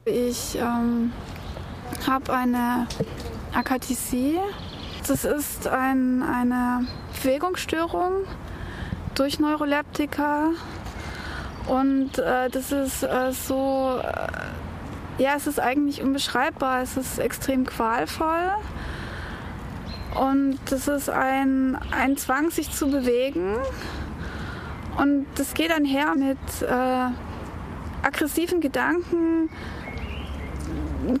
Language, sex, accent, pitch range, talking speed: German, female, German, 255-295 Hz, 90 wpm